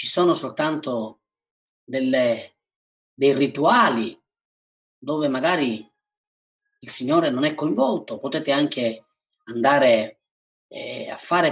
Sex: male